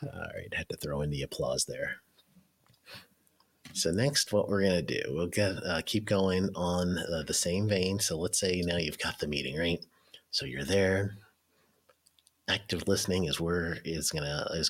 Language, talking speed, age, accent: English, 180 wpm, 30-49, American